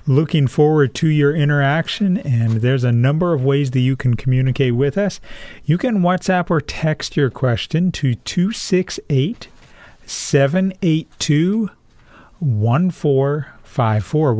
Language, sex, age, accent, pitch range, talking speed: English, male, 40-59, American, 125-165 Hz, 110 wpm